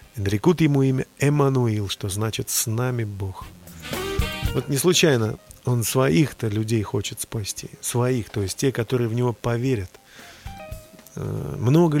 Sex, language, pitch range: male, Russian, 105-135 Hz